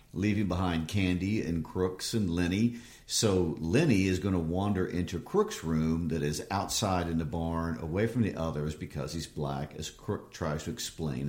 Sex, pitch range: male, 80-110 Hz